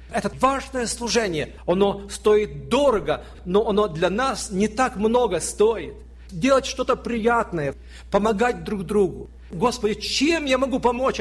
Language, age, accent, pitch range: Russian, 50-69, native, 180-230 Hz